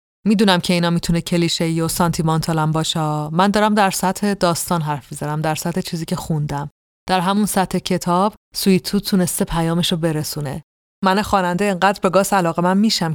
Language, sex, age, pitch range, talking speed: Persian, female, 30-49, 160-185 Hz, 175 wpm